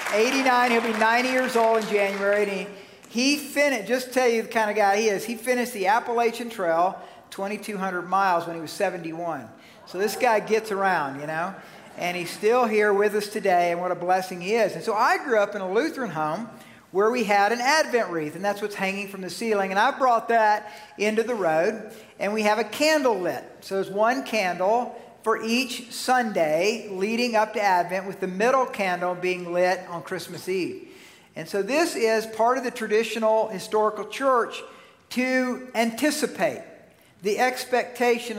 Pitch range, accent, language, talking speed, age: 200-250 Hz, American, English, 190 wpm, 50-69